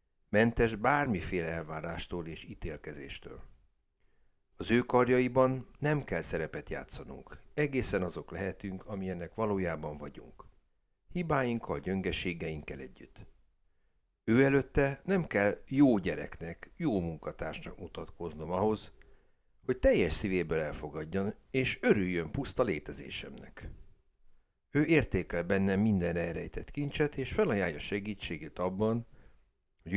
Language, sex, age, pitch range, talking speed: Hungarian, male, 60-79, 80-115 Hz, 100 wpm